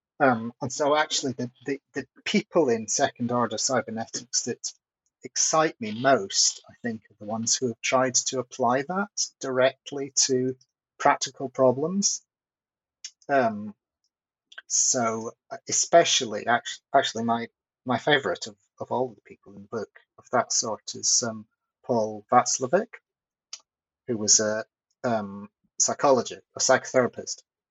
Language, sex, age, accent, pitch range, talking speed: English, male, 30-49, British, 110-140 Hz, 130 wpm